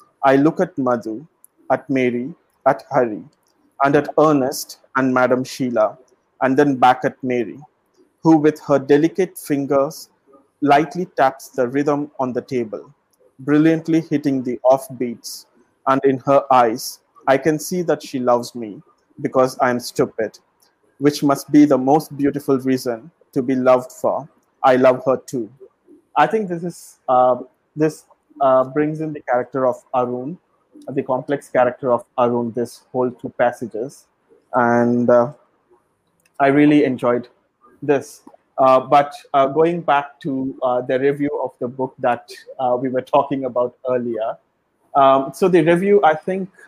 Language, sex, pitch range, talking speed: Tamil, male, 125-145 Hz, 155 wpm